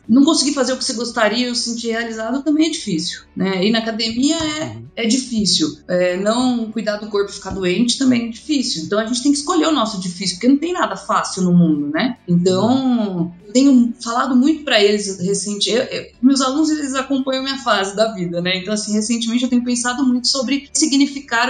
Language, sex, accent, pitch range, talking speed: Portuguese, female, Brazilian, 180-245 Hz, 210 wpm